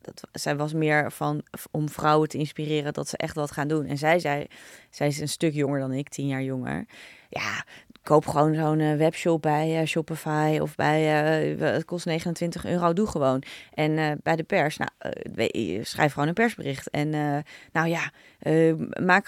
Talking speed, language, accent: 190 wpm, Dutch, Dutch